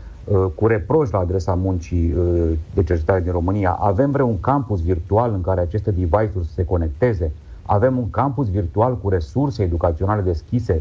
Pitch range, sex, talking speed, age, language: 85-125 Hz, male, 155 wpm, 40-59, Romanian